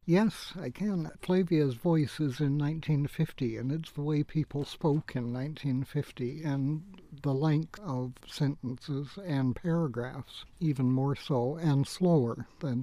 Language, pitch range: English, 130-155 Hz